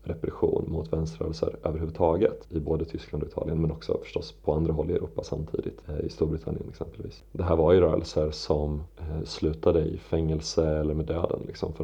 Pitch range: 80-85 Hz